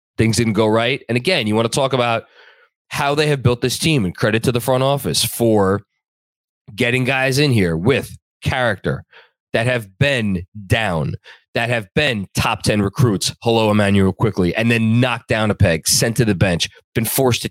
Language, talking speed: English, 190 wpm